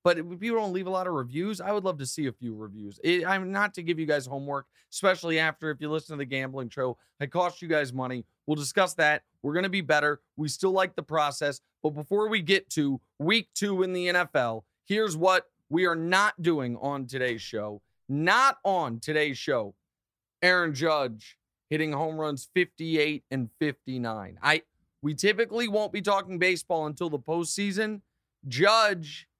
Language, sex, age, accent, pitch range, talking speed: English, male, 30-49, American, 145-200 Hz, 190 wpm